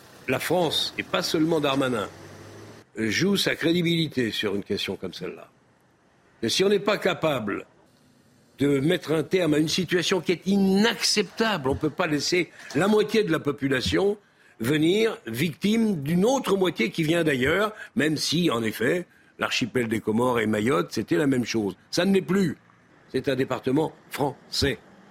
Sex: male